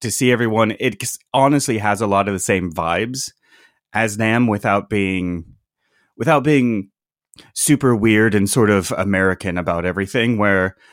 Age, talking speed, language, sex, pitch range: 30-49, 150 wpm, English, male, 95-115 Hz